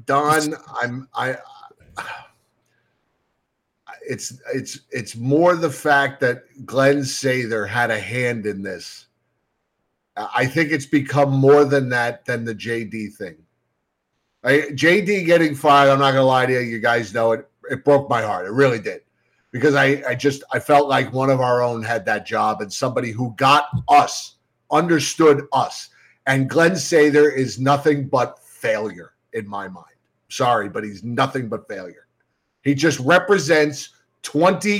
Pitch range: 125-150 Hz